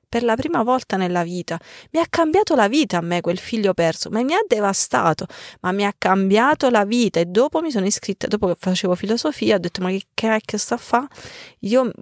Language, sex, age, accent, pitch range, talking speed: Italian, female, 30-49, native, 185-270 Hz, 230 wpm